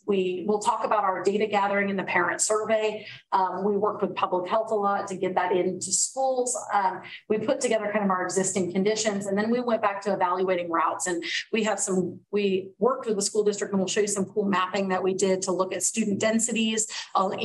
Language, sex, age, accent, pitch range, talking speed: English, female, 30-49, American, 185-220 Hz, 225 wpm